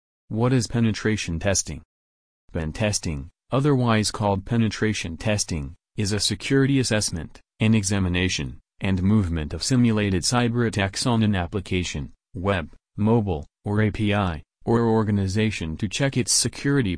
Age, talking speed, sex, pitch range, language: 40-59, 125 wpm, male, 90-115 Hz, English